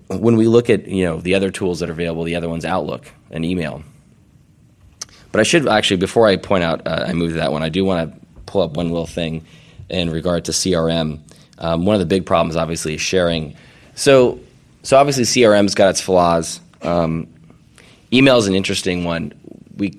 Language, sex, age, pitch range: English, male, 20-39, 80-95 Hz